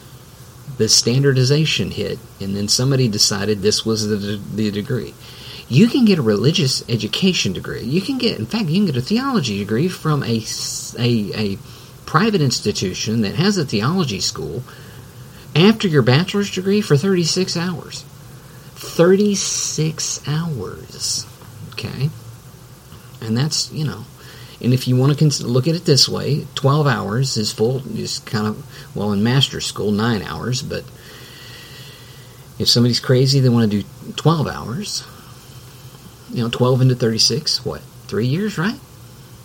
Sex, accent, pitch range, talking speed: male, American, 120-150 Hz, 150 wpm